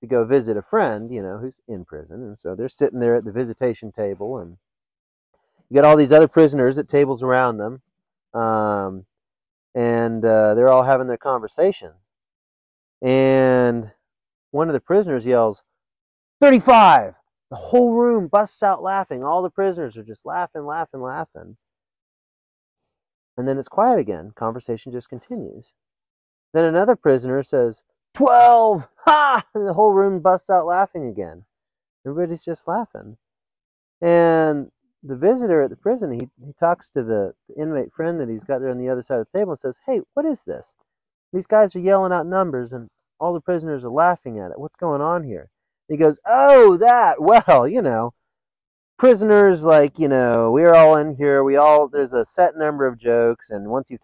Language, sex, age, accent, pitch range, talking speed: English, male, 30-49, American, 115-180 Hz, 180 wpm